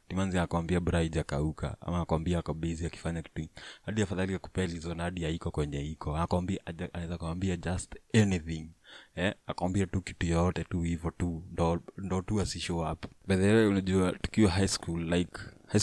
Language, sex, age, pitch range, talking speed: English, male, 20-39, 85-95 Hz, 180 wpm